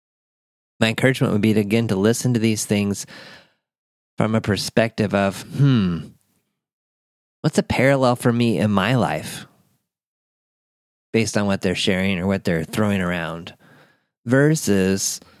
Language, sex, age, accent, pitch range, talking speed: English, male, 30-49, American, 95-120 Hz, 135 wpm